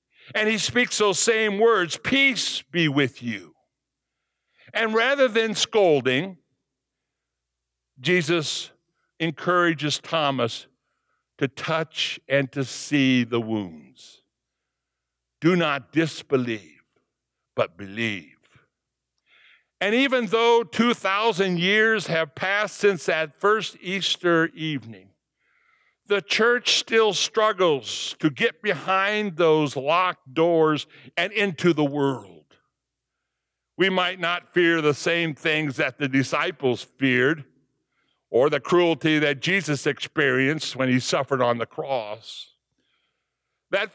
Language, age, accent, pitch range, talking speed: English, 60-79, American, 135-195 Hz, 110 wpm